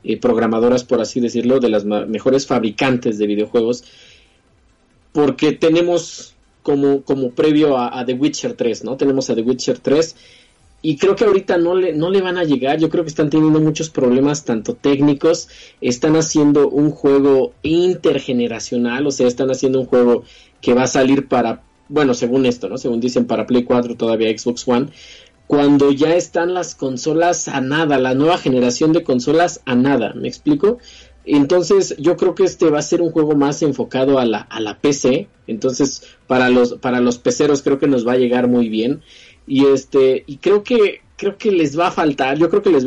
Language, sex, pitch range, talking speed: Spanish, male, 125-155 Hz, 190 wpm